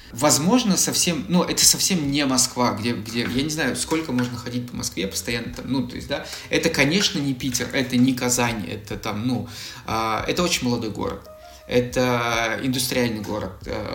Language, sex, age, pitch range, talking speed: Russian, male, 20-39, 120-150 Hz, 175 wpm